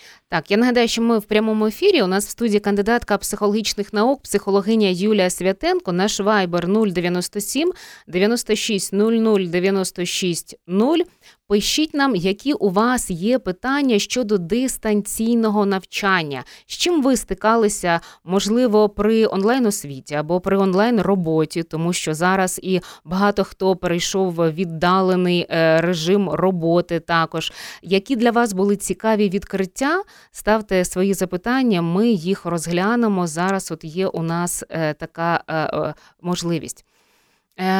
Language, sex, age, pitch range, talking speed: Ukrainian, female, 20-39, 185-230 Hz, 115 wpm